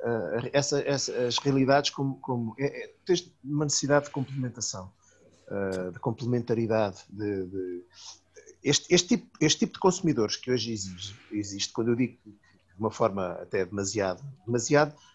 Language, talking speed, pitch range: Portuguese, 120 wpm, 120-165 Hz